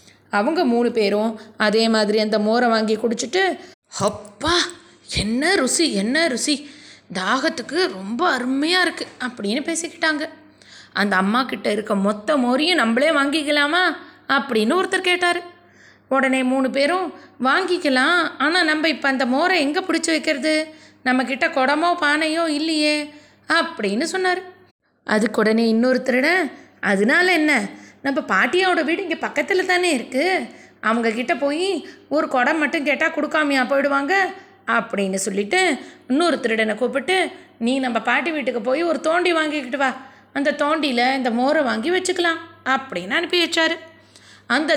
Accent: native